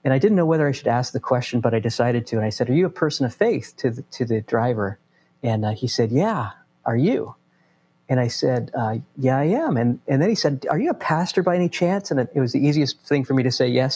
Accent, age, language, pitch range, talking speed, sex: American, 40-59, English, 120-150 Hz, 285 wpm, male